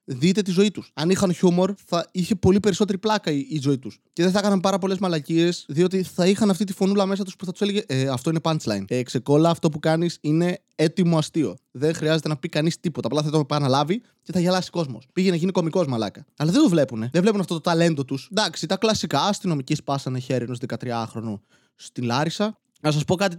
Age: 20-39